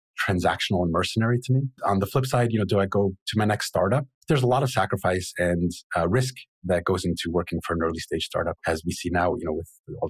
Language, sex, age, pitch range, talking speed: English, male, 30-49, 90-110 Hz, 255 wpm